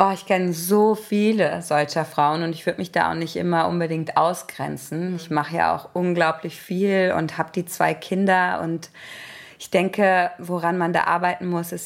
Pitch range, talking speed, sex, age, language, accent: 160-180 Hz, 185 wpm, female, 20-39, German, German